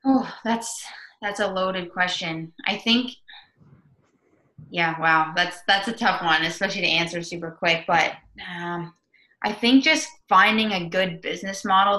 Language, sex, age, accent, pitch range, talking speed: English, female, 20-39, American, 155-185 Hz, 150 wpm